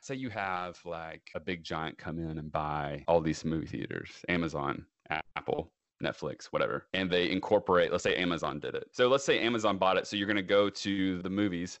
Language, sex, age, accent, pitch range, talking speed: English, male, 30-49, American, 85-100 Hz, 210 wpm